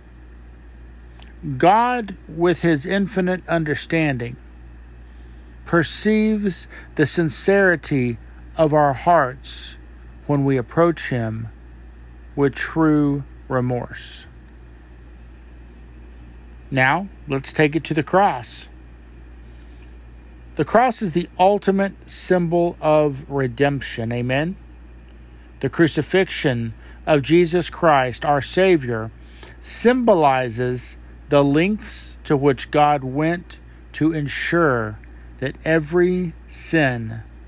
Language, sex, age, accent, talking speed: English, male, 50-69, American, 85 wpm